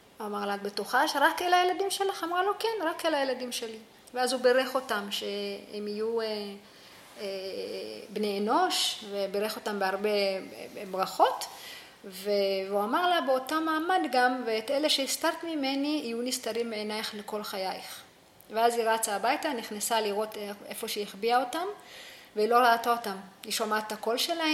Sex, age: female, 30-49